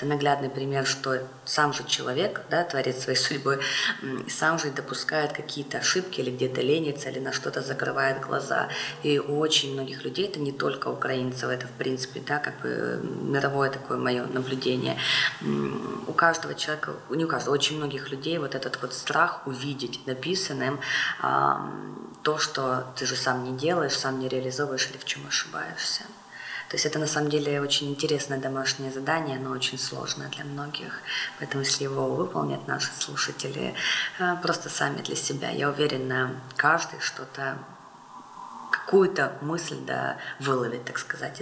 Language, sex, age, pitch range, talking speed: Ukrainian, female, 20-39, 130-170 Hz, 155 wpm